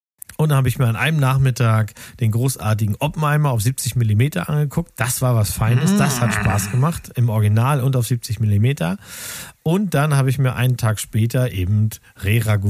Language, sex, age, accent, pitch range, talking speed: German, male, 40-59, German, 110-135 Hz, 185 wpm